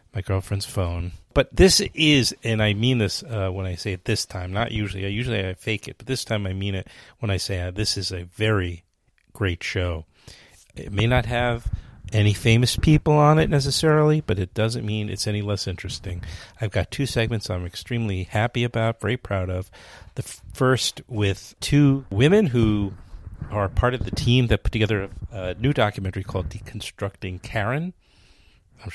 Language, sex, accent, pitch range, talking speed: English, male, American, 95-115 Hz, 185 wpm